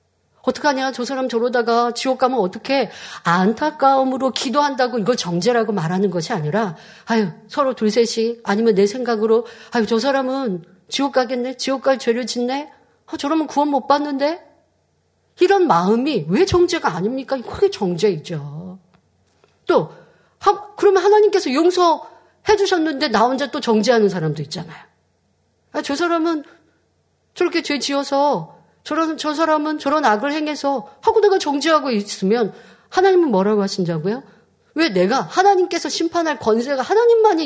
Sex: female